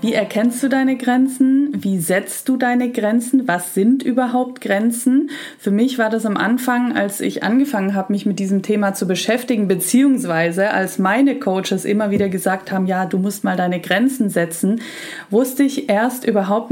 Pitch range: 200-250 Hz